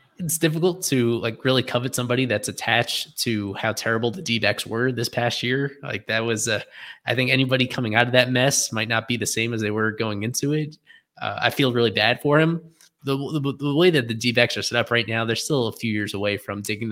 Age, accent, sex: 20-39, American, male